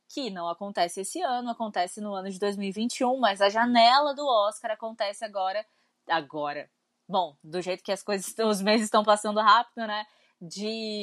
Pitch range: 190-250 Hz